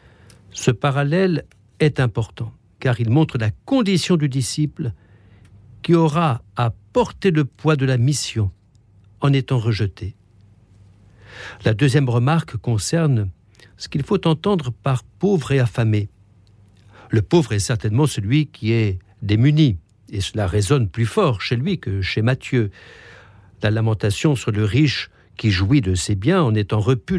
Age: 60-79